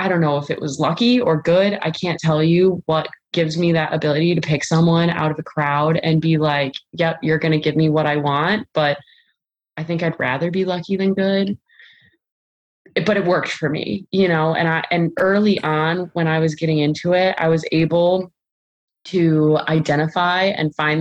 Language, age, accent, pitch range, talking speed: English, 20-39, American, 155-180 Hz, 205 wpm